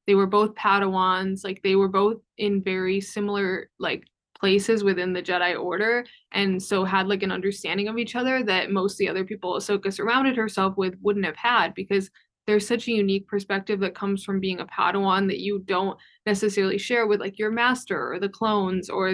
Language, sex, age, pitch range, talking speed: English, female, 20-39, 195-210 Hz, 200 wpm